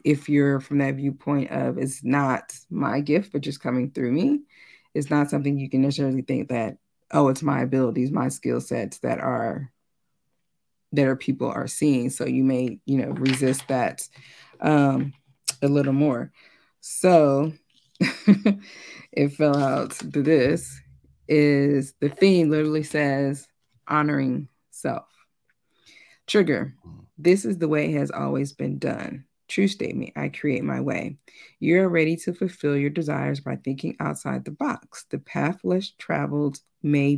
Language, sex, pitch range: English, female, 135-155 Hz